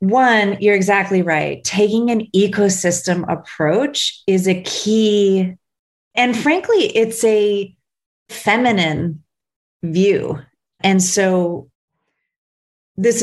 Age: 30-49